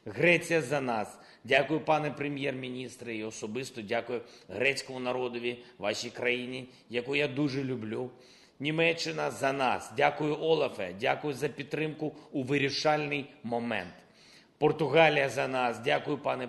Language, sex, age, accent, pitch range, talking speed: Ukrainian, male, 30-49, native, 120-150 Hz, 130 wpm